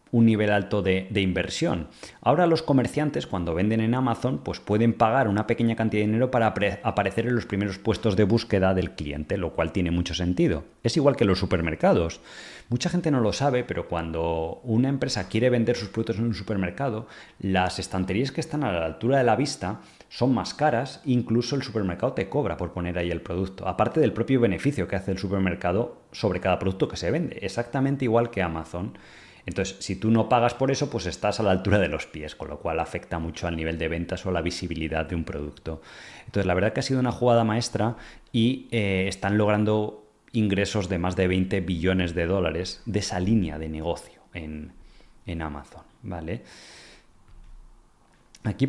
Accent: Spanish